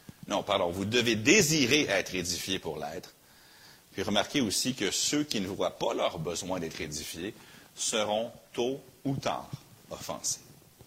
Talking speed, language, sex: 150 wpm, French, male